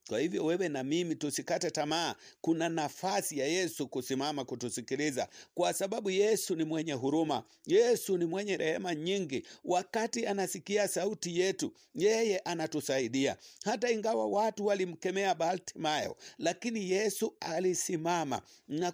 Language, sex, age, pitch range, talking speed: English, male, 50-69, 165-210 Hz, 125 wpm